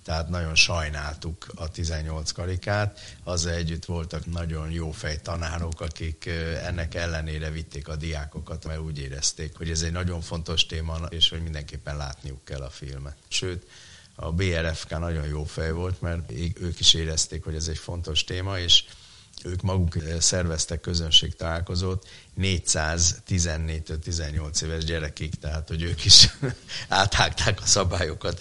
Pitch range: 75-85 Hz